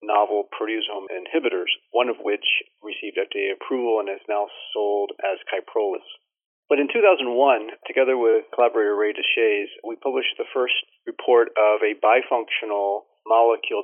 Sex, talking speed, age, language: male, 140 wpm, 40-59, English